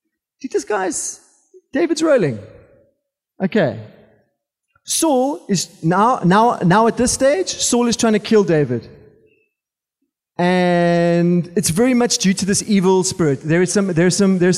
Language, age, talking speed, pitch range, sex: English, 30-49, 140 wpm, 155-210 Hz, male